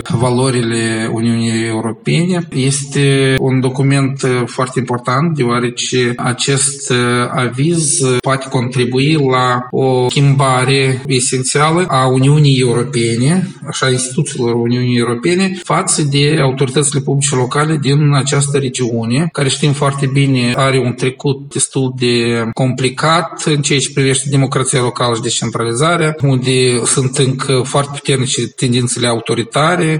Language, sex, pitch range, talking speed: Romanian, male, 125-145 Hz, 115 wpm